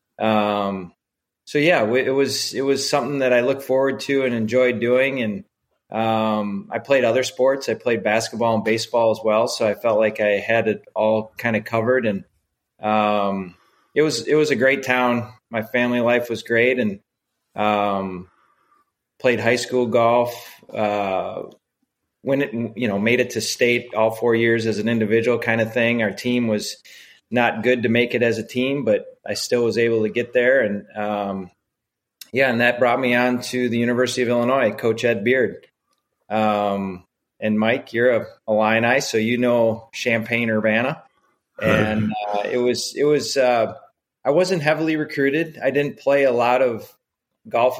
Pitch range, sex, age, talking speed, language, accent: 110-125 Hz, male, 30-49, 175 wpm, English, American